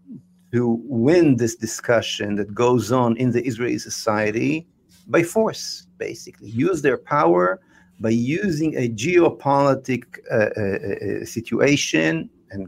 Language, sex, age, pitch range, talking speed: English, male, 50-69, 110-140 Hz, 125 wpm